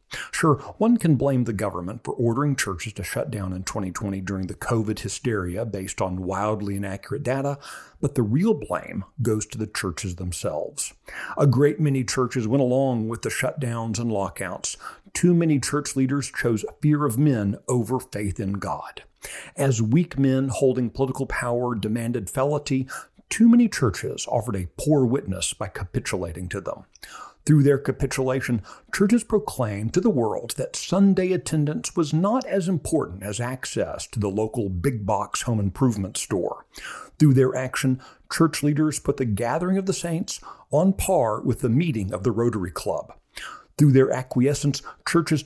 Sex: male